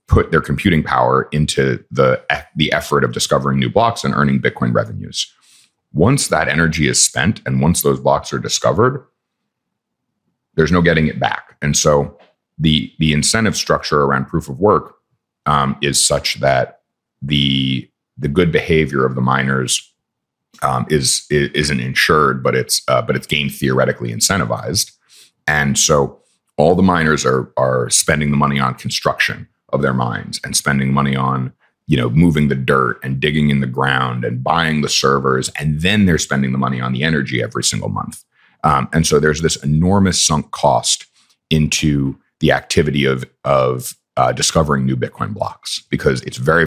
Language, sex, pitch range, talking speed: English, male, 65-75 Hz, 170 wpm